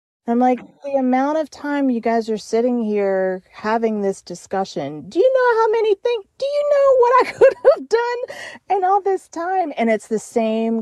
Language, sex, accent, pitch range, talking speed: English, female, American, 160-205 Hz, 200 wpm